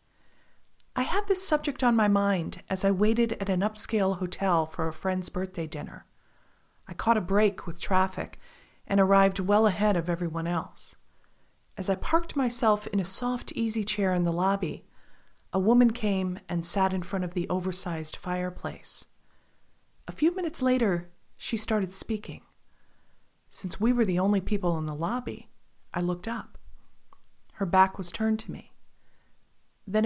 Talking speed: 160 wpm